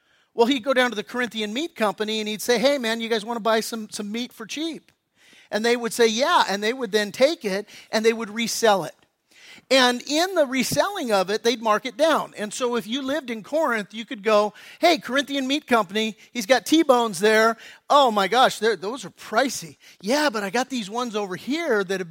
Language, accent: English, American